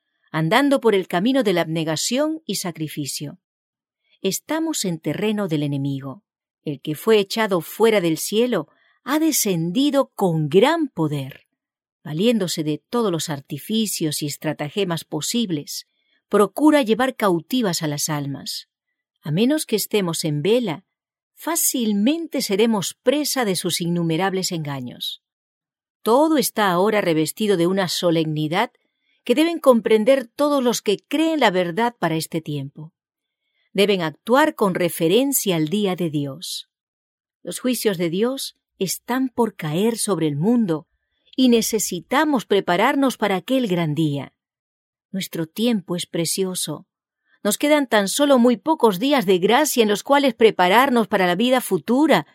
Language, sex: English, female